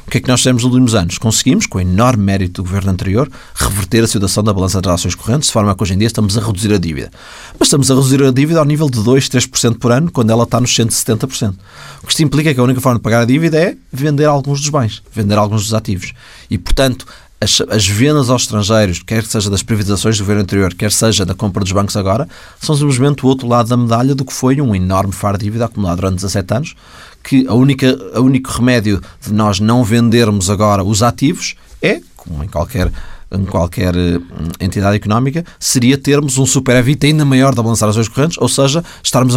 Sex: male